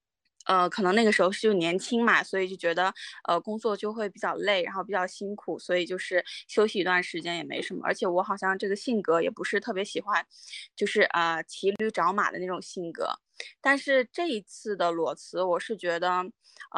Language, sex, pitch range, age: Chinese, female, 180-235 Hz, 20-39